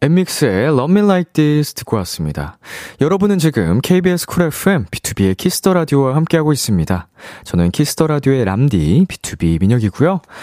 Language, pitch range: Korean, 95-160 Hz